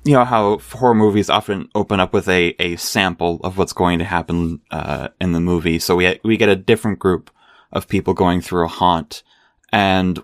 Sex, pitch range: male, 90-115 Hz